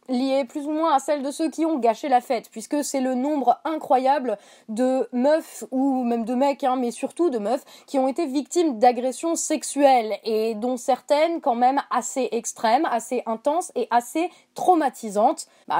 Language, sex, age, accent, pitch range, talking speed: French, female, 20-39, French, 240-290 Hz, 180 wpm